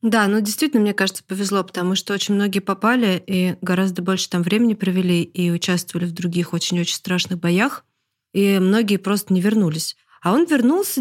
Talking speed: 175 wpm